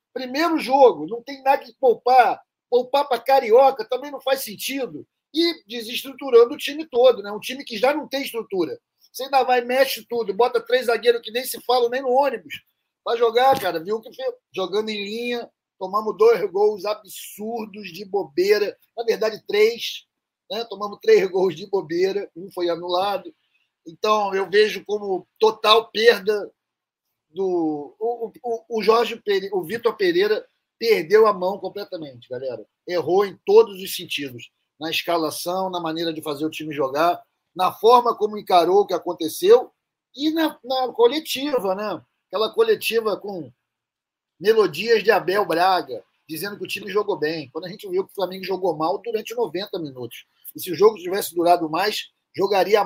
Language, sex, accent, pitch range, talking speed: Portuguese, male, Brazilian, 200-315 Hz, 165 wpm